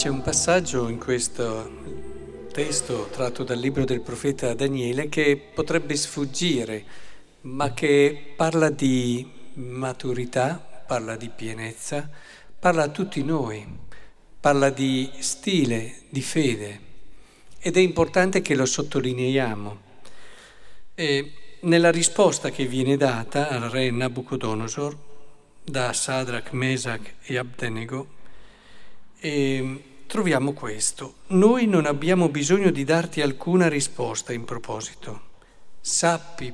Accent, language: native, Italian